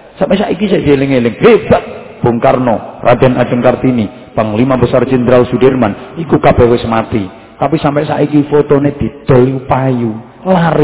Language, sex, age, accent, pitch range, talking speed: English, male, 40-59, Indonesian, 120-185 Hz, 170 wpm